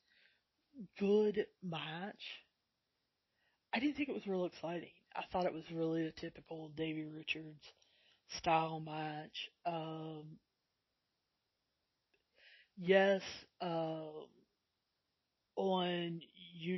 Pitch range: 160-185 Hz